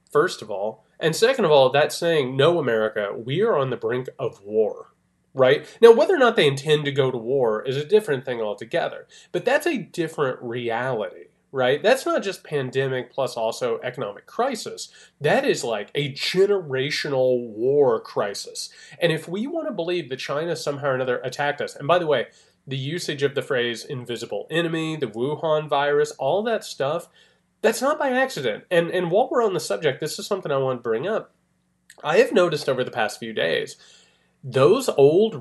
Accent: American